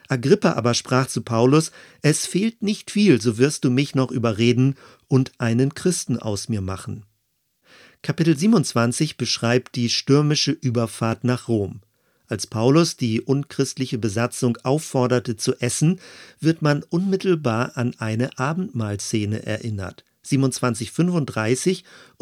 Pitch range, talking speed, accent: 115-150 Hz, 120 wpm, German